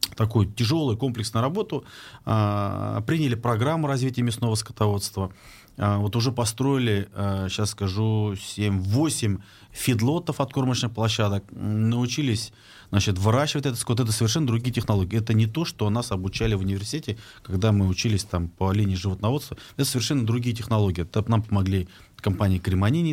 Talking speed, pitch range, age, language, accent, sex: 145 wpm, 100-125 Hz, 30-49, Russian, native, male